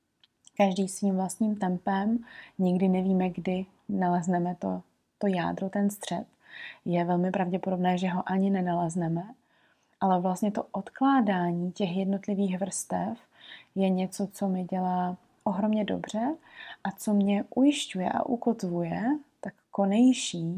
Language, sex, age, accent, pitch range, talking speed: Czech, female, 20-39, native, 180-200 Hz, 120 wpm